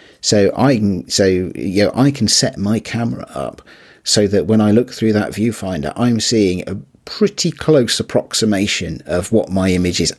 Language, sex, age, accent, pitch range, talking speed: English, male, 40-59, British, 85-105 Hz, 175 wpm